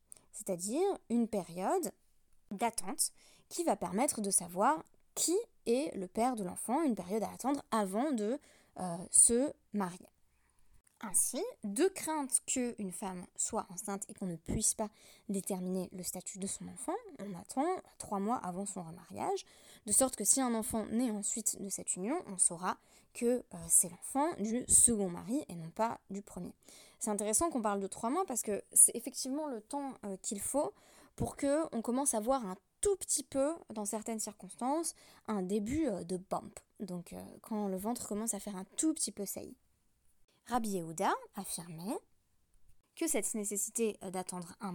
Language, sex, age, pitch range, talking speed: French, female, 20-39, 195-265 Hz, 170 wpm